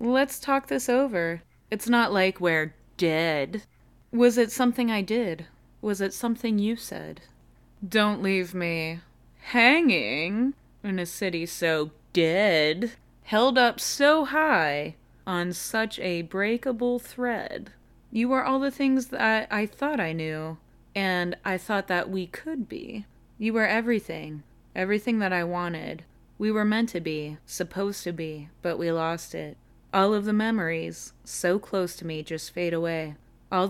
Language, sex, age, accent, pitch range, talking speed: English, female, 20-39, American, 165-215 Hz, 155 wpm